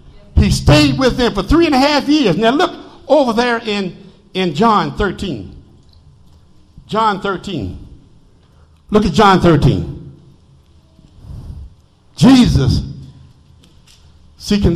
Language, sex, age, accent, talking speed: English, male, 60-79, American, 105 wpm